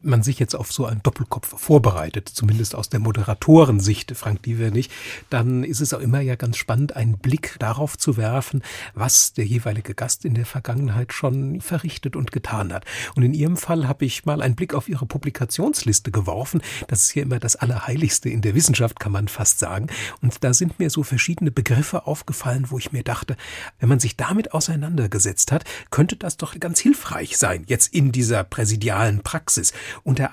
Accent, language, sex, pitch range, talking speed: German, German, male, 115-150 Hz, 190 wpm